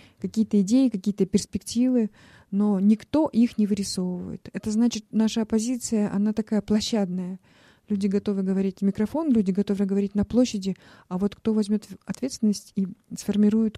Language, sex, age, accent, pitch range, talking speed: Russian, female, 30-49, native, 195-220 Hz, 145 wpm